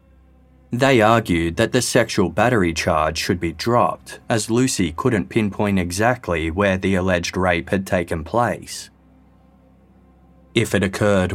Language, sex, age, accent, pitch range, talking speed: English, male, 20-39, Australian, 85-115 Hz, 130 wpm